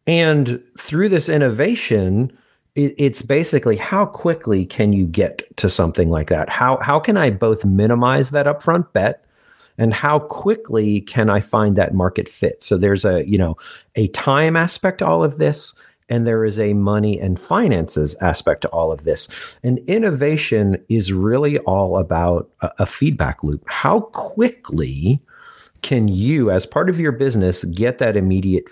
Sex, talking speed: male, 165 wpm